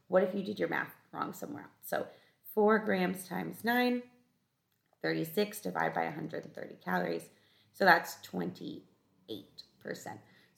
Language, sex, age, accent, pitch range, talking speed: English, female, 30-49, American, 160-230 Hz, 125 wpm